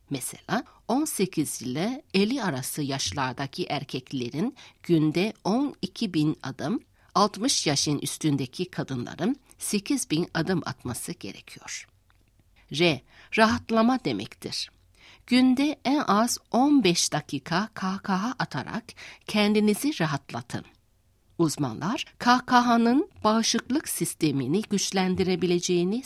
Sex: female